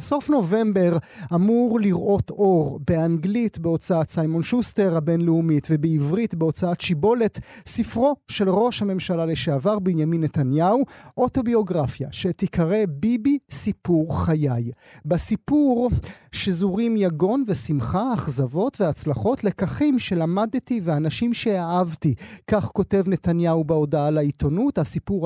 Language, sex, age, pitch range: Hebrew, male, 30-49, 165-215 Hz